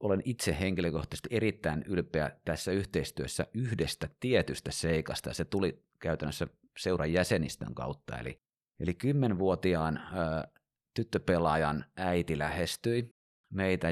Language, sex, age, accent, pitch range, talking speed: Finnish, male, 30-49, native, 80-95 Hz, 95 wpm